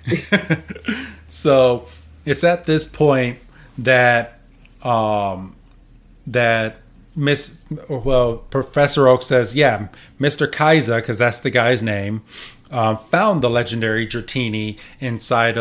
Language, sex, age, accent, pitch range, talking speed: English, male, 30-49, American, 110-135 Hz, 105 wpm